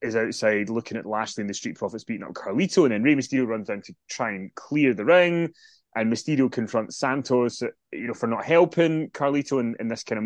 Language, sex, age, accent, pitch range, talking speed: English, male, 20-39, British, 110-140 Hz, 230 wpm